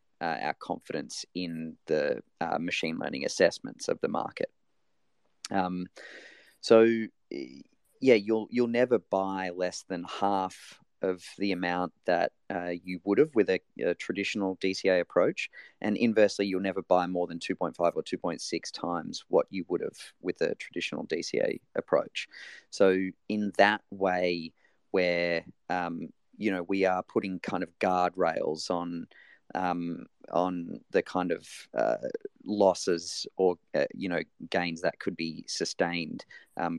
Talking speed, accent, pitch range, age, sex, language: 145 wpm, Australian, 90-100 Hz, 30-49, male, English